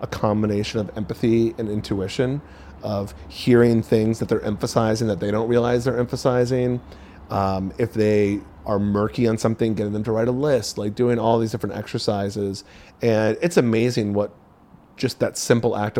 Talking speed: 170 wpm